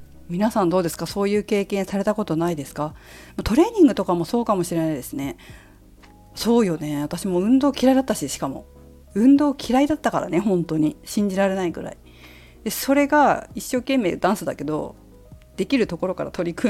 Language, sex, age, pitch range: Japanese, female, 40-59, 145-235 Hz